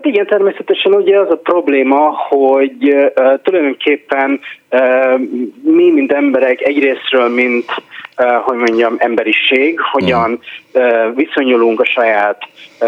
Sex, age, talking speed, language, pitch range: male, 30-49, 115 wpm, Hungarian, 115-170 Hz